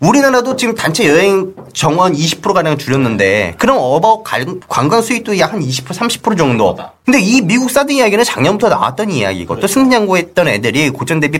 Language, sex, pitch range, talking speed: English, male, 155-255 Hz, 155 wpm